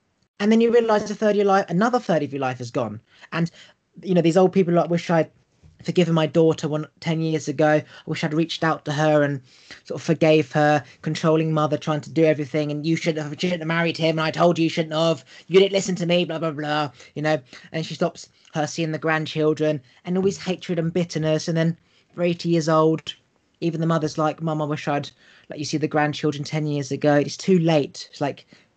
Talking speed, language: 245 wpm, English